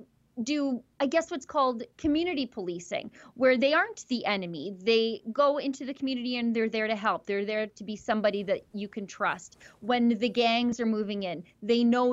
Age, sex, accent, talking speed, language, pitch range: 30-49, female, American, 195 wpm, English, 210-255 Hz